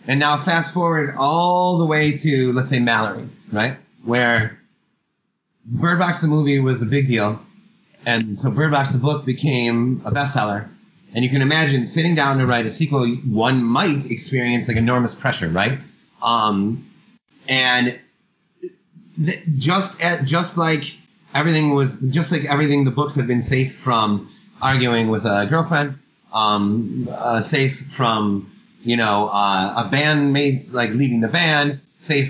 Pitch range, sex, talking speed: 120-160 Hz, male, 155 wpm